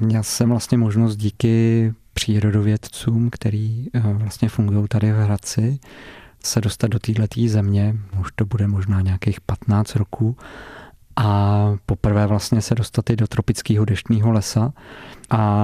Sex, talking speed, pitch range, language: male, 135 wpm, 100-115 Hz, Czech